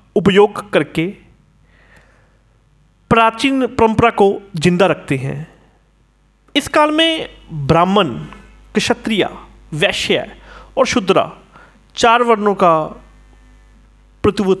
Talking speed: 80 wpm